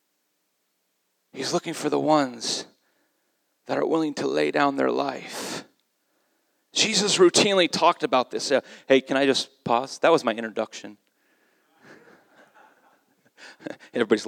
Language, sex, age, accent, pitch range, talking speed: English, male, 30-49, American, 140-165 Hz, 120 wpm